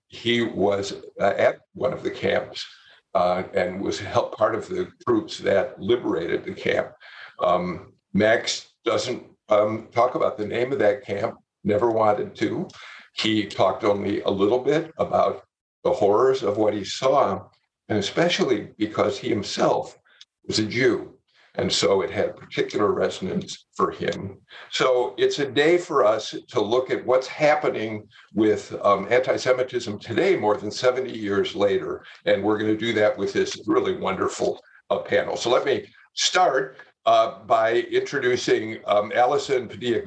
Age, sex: 50-69, male